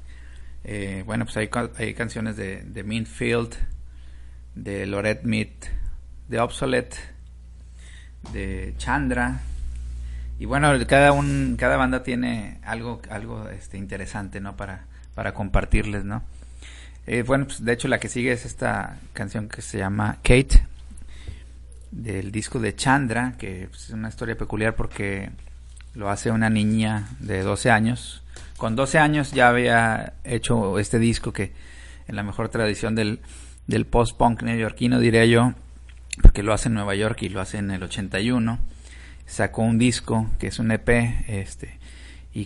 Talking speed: 150 wpm